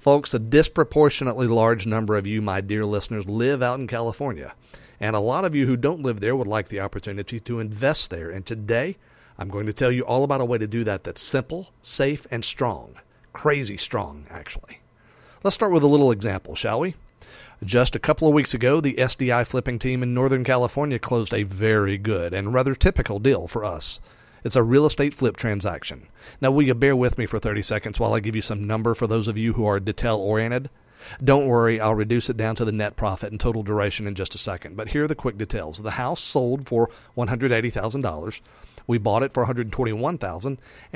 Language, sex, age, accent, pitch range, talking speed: English, male, 40-59, American, 110-130 Hz, 210 wpm